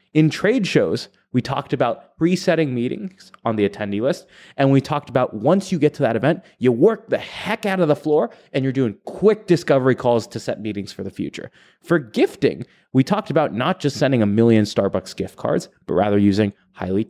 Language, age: English, 20-39